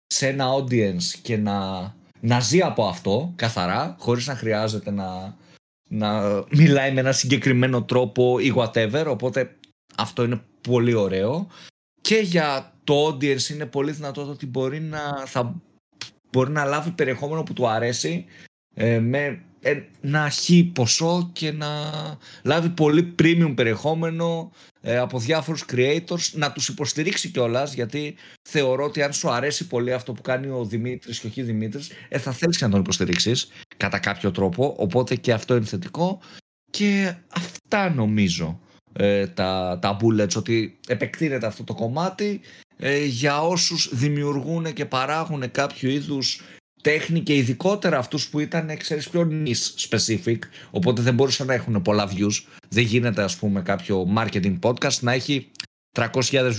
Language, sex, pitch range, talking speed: Greek, male, 115-155 Hz, 145 wpm